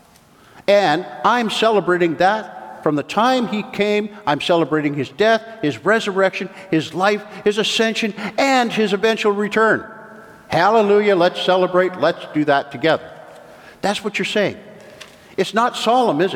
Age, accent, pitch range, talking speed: 50-69, American, 155-210 Hz, 140 wpm